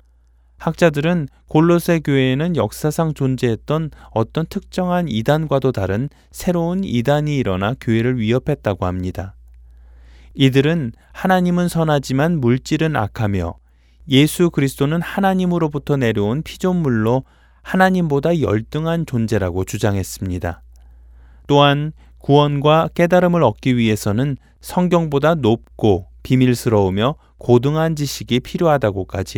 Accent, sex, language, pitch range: native, male, Korean, 100-160 Hz